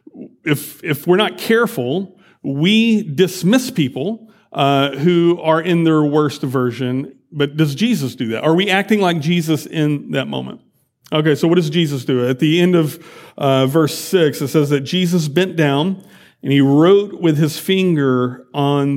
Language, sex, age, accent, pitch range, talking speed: English, male, 40-59, American, 140-205 Hz, 170 wpm